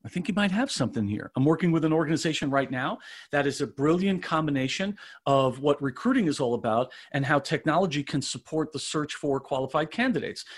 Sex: male